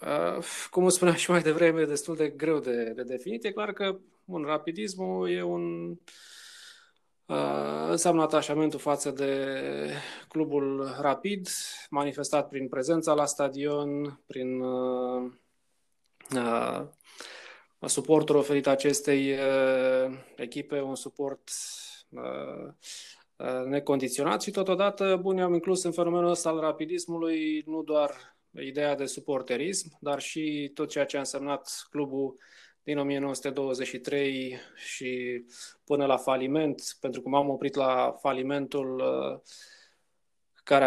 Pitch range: 135-155 Hz